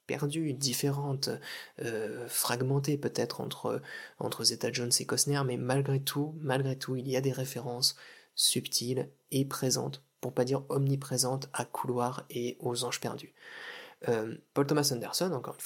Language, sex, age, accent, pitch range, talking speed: French, male, 20-39, French, 125-145 Hz, 155 wpm